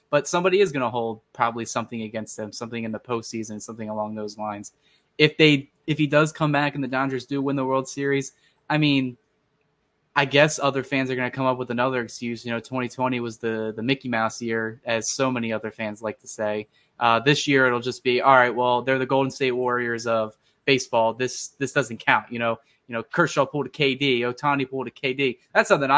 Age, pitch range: 20-39, 115-145 Hz